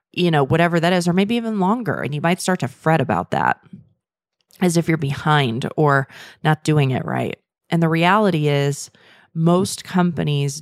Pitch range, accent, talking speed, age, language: 145-175 Hz, American, 180 wpm, 30-49, English